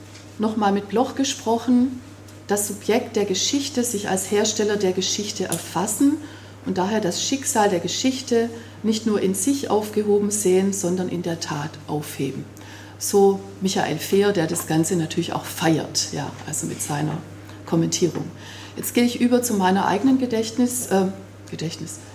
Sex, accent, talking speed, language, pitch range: female, German, 150 wpm, German, 160-215 Hz